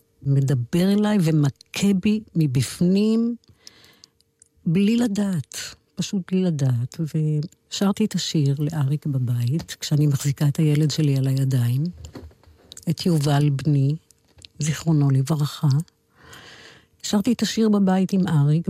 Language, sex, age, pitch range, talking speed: Hebrew, female, 60-79, 140-185 Hz, 105 wpm